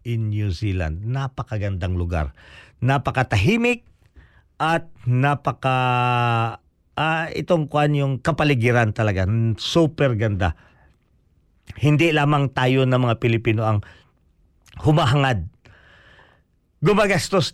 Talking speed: 85 wpm